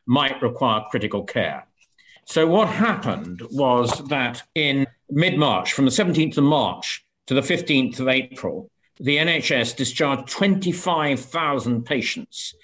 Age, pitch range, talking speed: 50-69, 125-155 Hz, 125 wpm